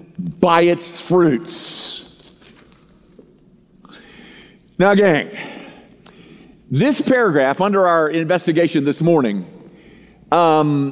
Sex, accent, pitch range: male, American, 160-205 Hz